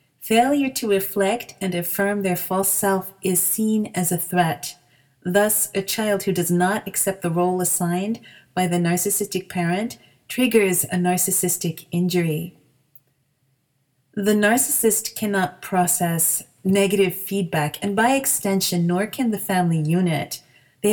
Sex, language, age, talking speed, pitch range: female, English, 30-49, 130 wpm, 165-205 Hz